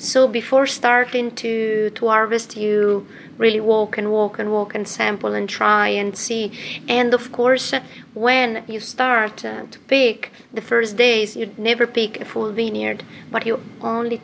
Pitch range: 215-245 Hz